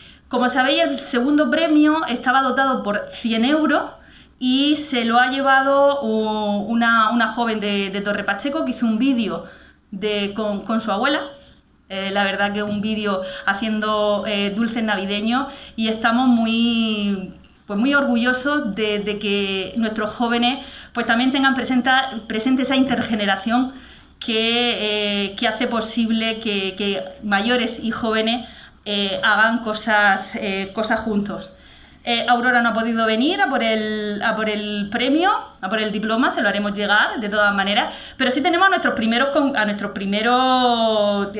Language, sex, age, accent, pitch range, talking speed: Spanish, female, 20-39, Spanish, 210-255 Hz, 155 wpm